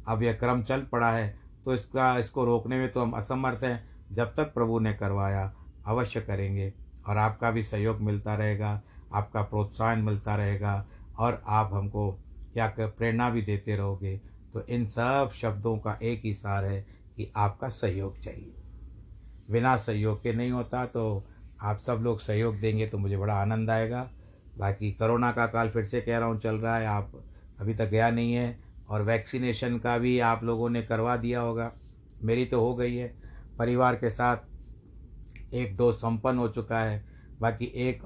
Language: Hindi